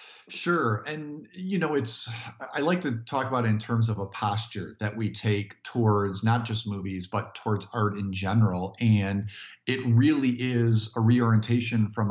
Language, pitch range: English, 105-120 Hz